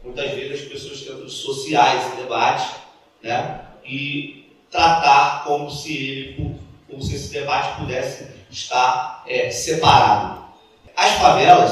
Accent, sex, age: Brazilian, male, 30-49